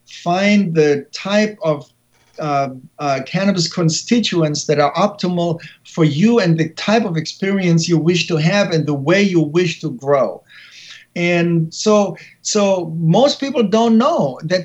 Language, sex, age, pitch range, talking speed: English, male, 50-69, 160-205 Hz, 150 wpm